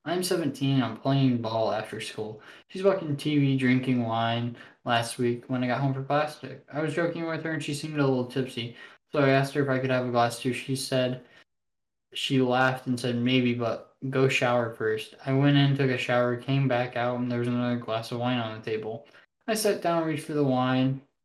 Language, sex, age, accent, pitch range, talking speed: English, male, 10-29, American, 120-140 Hz, 225 wpm